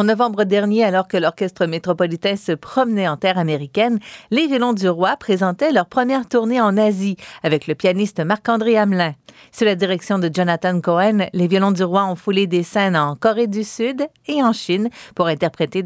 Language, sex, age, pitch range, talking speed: French, female, 50-69, 170-220 Hz, 190 wpm